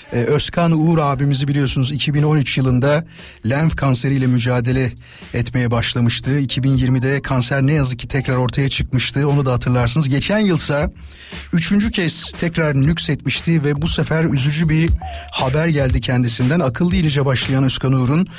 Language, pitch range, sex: Turkish, 130-170 Hz, male